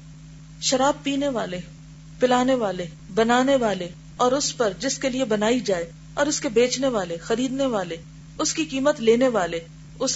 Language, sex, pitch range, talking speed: Urdu, female, 155-235 Hz, 165 wpm